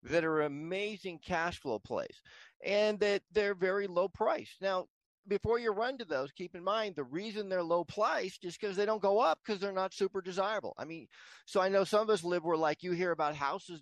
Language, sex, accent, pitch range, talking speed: English, male, American, 145-190 Hz, 225 wpm